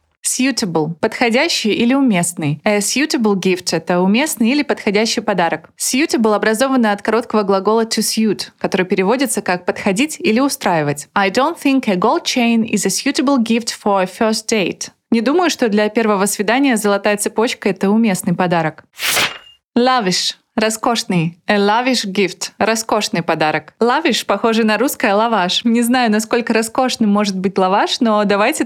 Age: 20-39